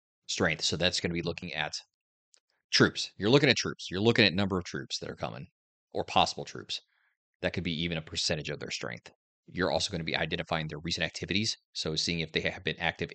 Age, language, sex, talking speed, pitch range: 30-49, English, male, 230 wpm, 80-90 Hz